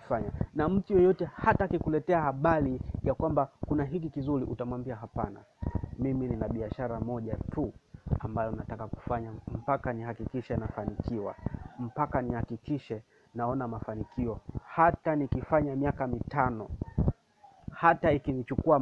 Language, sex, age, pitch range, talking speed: Swahili, male, 30-49, 125-160 Hz, 120 wpm